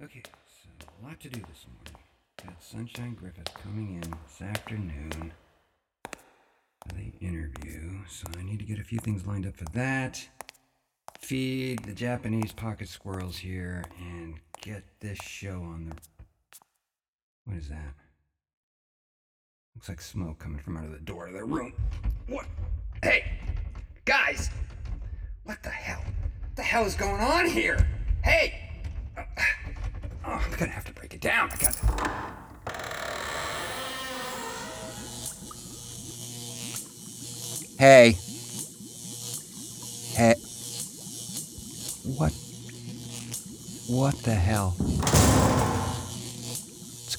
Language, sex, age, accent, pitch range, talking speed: English, male, 50-69, American, 85-115 Hz, 115 wpm